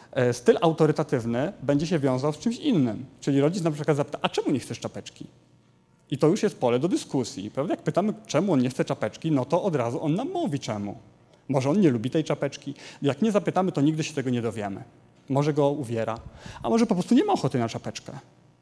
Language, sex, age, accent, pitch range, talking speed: Polish, male, 30-49, native, 125-190 Hz, 220 wpm